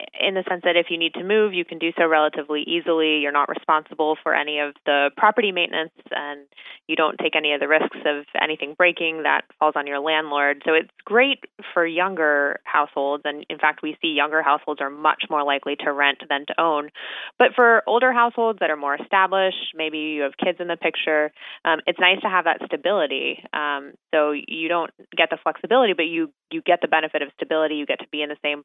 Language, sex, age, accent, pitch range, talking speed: English, female, 20-39, American, 145-170 Hz, 220 wpm